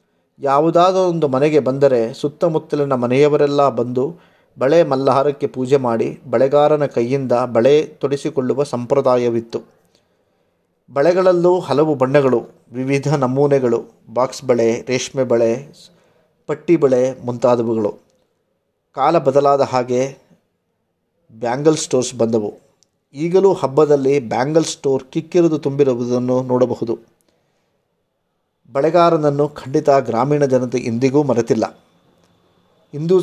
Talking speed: 85 wpm